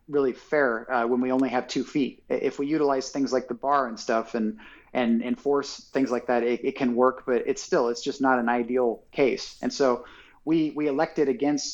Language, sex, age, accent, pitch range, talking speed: English, male, 30-49, American, 120-140 Hz, 220 wpm